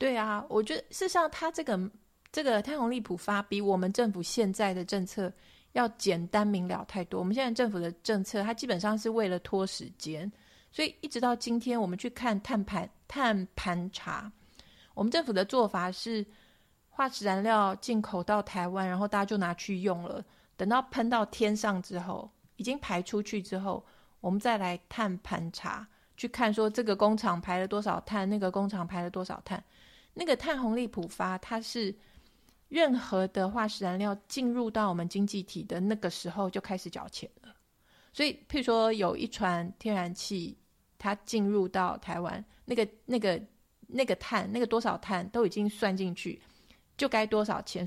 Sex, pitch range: female, 190-235 Hz